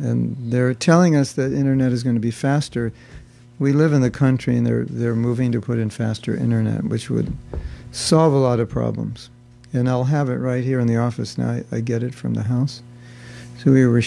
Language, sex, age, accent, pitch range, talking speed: English, male, 60-79, American, 120-135 Hz, 220 wpm